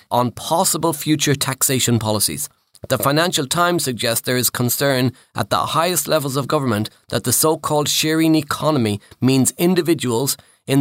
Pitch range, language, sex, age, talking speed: 120-155 Hz, English, male, 30-49, 145 wpm